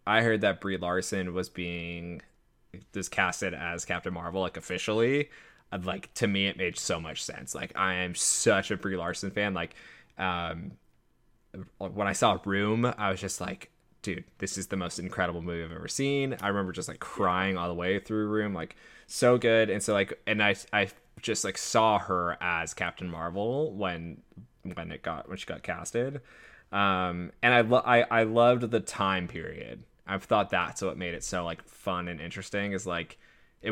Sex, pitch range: male, 90-110 Hz